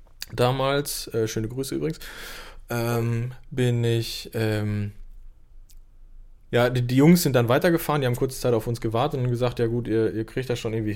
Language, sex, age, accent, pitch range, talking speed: German, male, 20-39, German, 110-140 Hz, 180 wpm